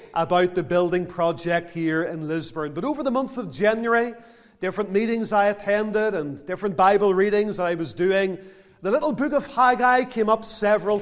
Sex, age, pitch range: male, 40-59, 175-230 Hz